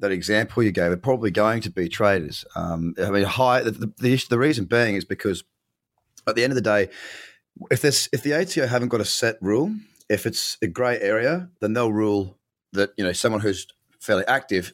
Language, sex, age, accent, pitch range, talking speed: English, male, 30-49, Australian, 95-130 Hz, 210 wpm